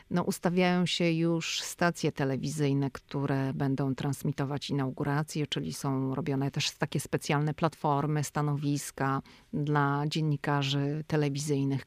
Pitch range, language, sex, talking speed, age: 140-165 Hz, Polish, female, 105 wpm, 40-59